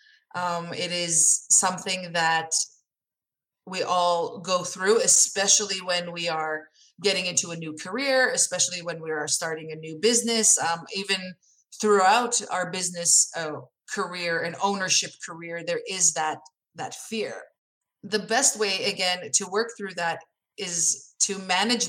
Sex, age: female, 30-49